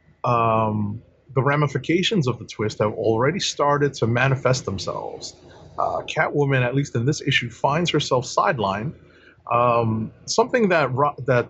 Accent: American